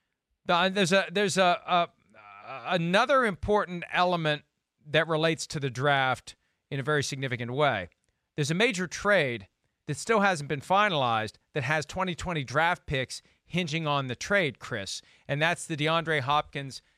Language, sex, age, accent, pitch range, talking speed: English, male, 40-59, American, 150-210 Hz, 150 wpm